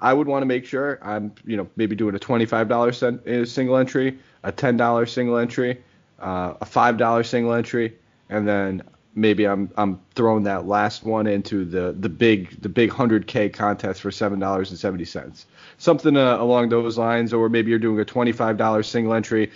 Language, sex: English, male